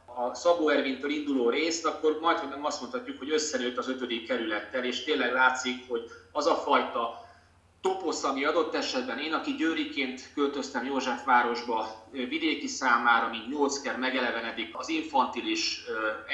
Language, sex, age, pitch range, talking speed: Hungarian, male, 30-49, 125-160 Hz, 155 wpm